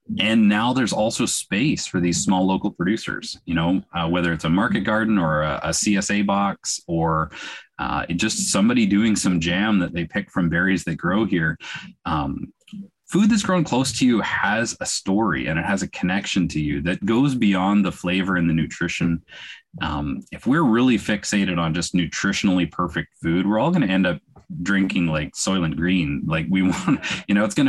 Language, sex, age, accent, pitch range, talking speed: English, male, 30-49, American, 85-105 Hz, 195 wpm